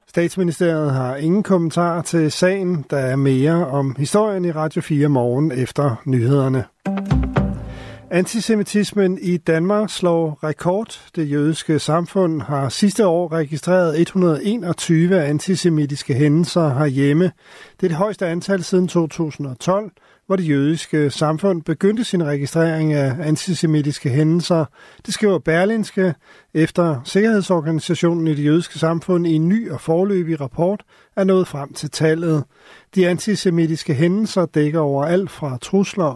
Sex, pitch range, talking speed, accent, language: male, 150-185 Hz, 130 wpm, native, Danish